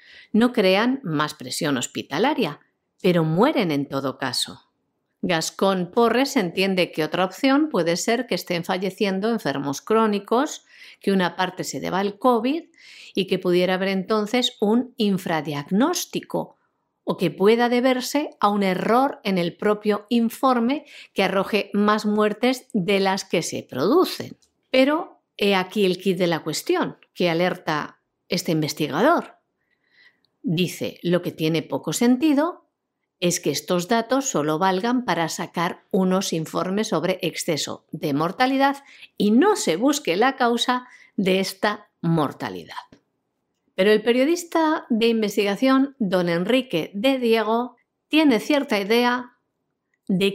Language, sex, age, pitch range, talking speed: Spanish, female, 50-69, 180-255 Hz, 130 wpm